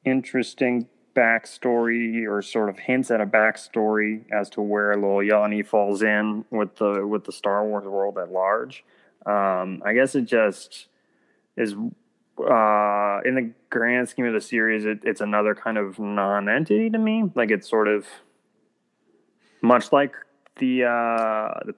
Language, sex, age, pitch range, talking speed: English, male, 20-39, 105-140 Hz, 150 wpm